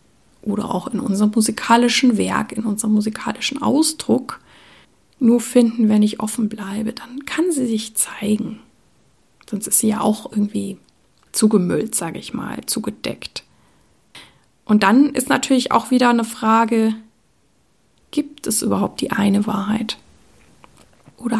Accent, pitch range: German, 210-230 Hz